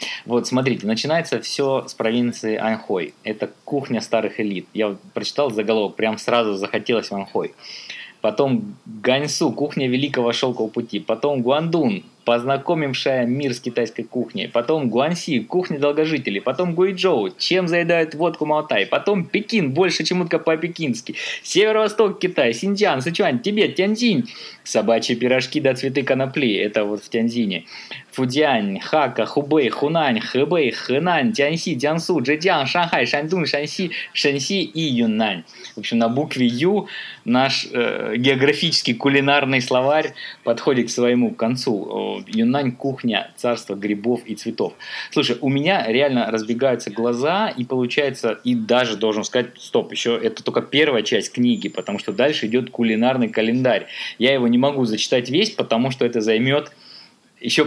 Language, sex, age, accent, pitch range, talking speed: Russian, male, 20-39, native, 115-155 Hz, 140 wpm